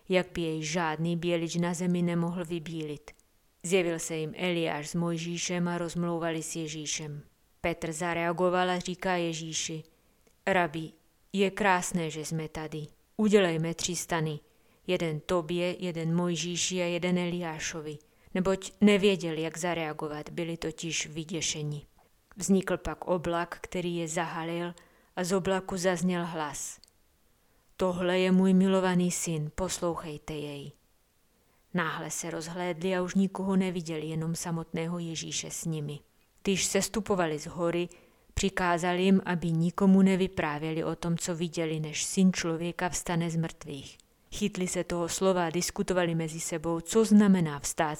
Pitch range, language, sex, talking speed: 165-185 Hz, Czech, female, 135 wpm